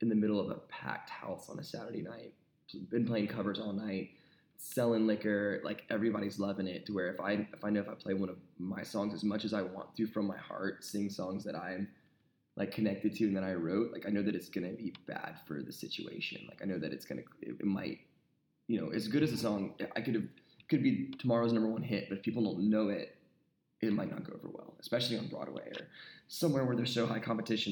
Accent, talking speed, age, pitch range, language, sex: American, 250 wpm, 10-29, 100-110 Hz, English, male